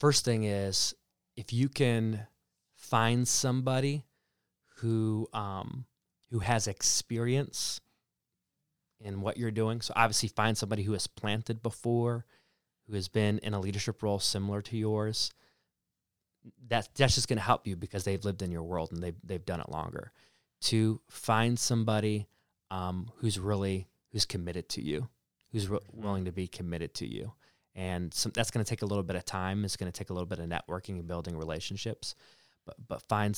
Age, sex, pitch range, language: 30-49, male, 95-115 Hz, English